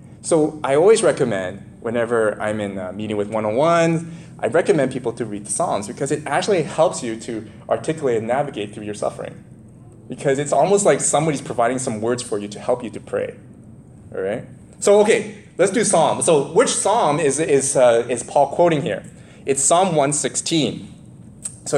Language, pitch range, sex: English, 125-170 Hz, male